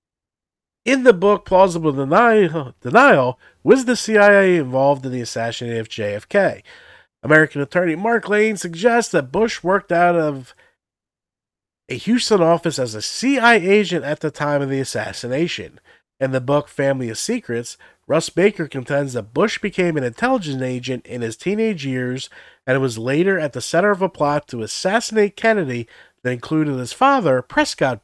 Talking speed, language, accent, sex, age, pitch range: 155 wpm, English, American, male, 50-69, 125-195 Hz